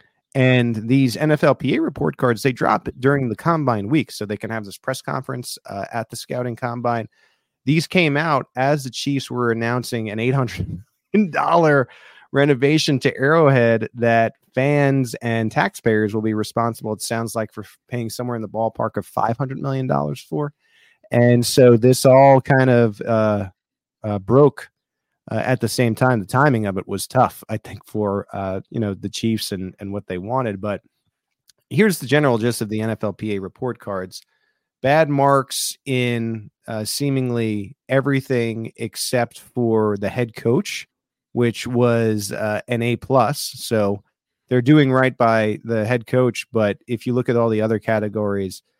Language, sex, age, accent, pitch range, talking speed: English, male, 30-49, American, 110-130 Hz, 165 wpm